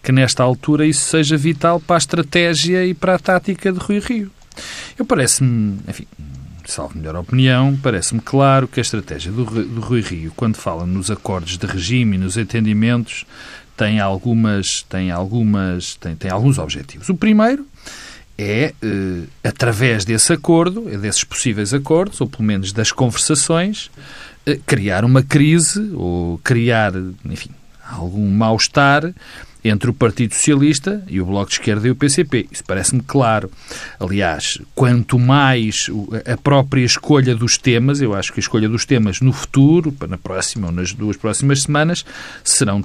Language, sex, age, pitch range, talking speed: Portuguese, male, 40-59, 105-155 Hz, 160 wpm